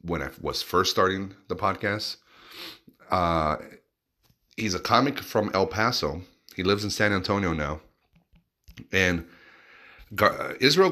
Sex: male